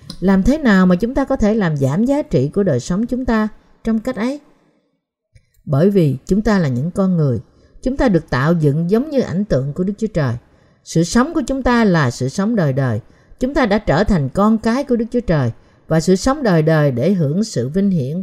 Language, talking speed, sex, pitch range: Vietnamese, 235 wpm, female, 150-225 Hz